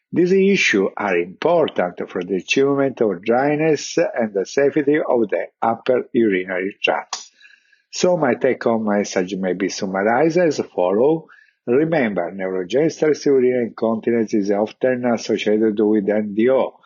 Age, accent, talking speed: 50-69, Italian, 125 wpm